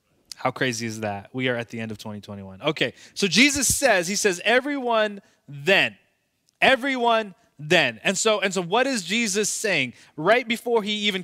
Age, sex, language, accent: 20-39, male, English, American